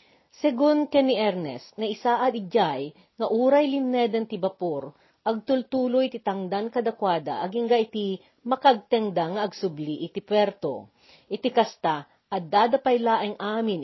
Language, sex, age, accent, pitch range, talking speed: Filipino, female, 40-59, native, 180-240 Hz, 115 wpm